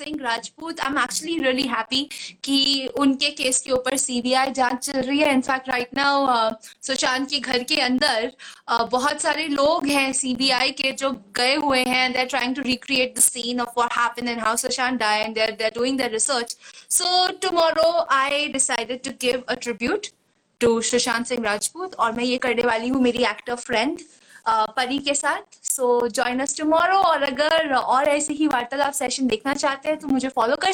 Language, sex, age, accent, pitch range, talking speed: Hindi, female, 20-39, native, 250-310 Hz, 155 wpm